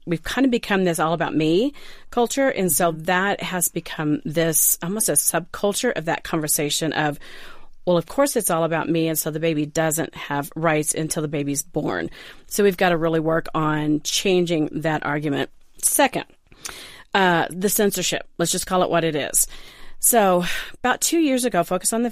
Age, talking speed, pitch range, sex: 40-59, 185 wpm, 155-185 Hz, female